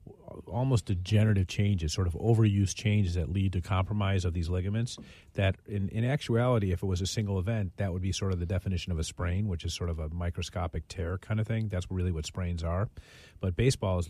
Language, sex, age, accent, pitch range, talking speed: English, male, 40-59, American, 90-110 Hz, 220 wpm